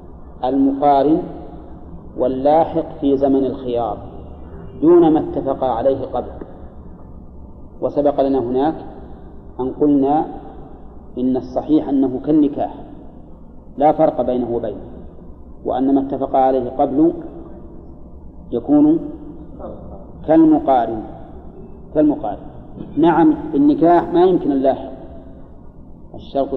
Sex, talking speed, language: male, 85 wpm, Arabic